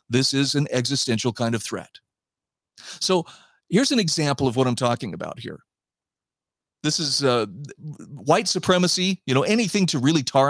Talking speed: 160 wpm